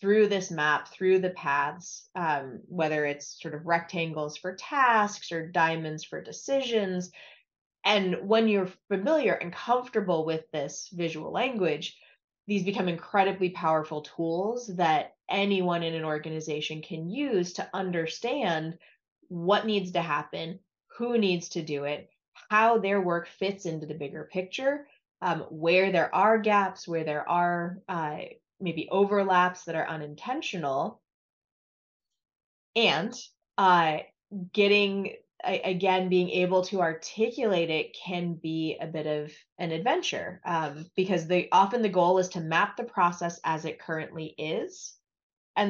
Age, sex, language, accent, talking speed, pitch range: 20-39, female, English, American, 135 wpm, 160-200 Hz